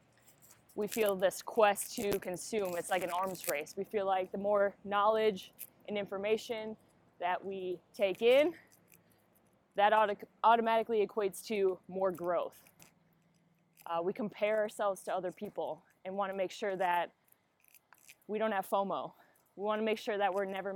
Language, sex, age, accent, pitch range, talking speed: English, female, 20-39, American, 185-215 Hz, 150 wpm